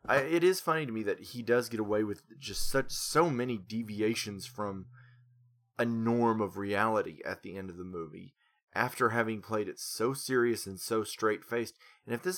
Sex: male